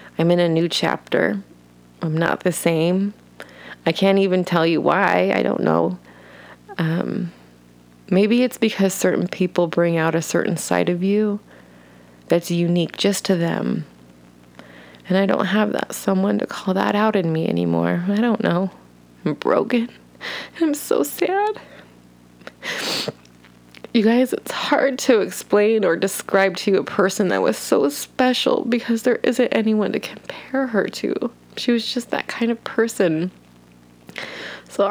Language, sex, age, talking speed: English, female, 20-39, 155 wpm